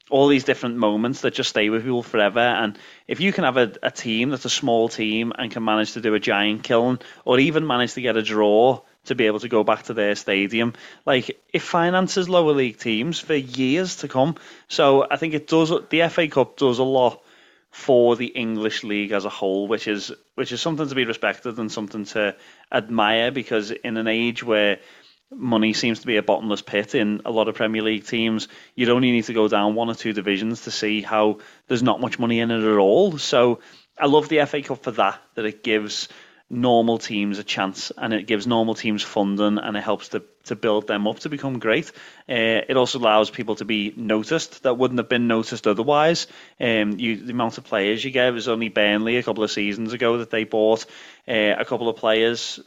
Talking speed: 225 wpm